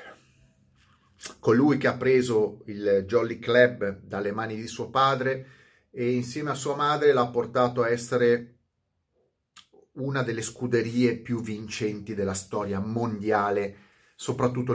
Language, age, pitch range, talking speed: Italian, 30-49, 110-130 Hz, 120 wpm